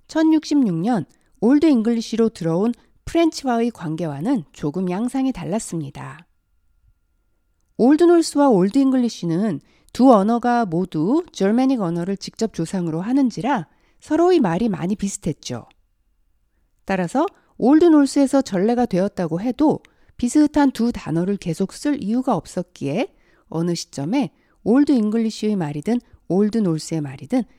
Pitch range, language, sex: 165-265 Hz, Korean, female